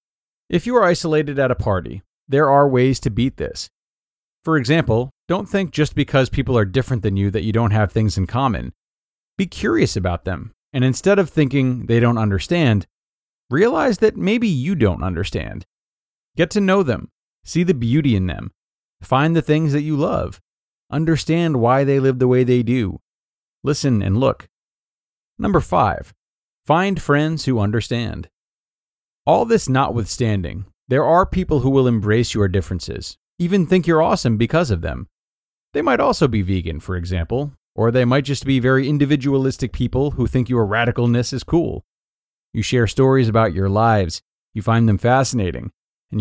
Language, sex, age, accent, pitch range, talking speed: English, male, 30-49, American, 105-145 Hz, 170 wpm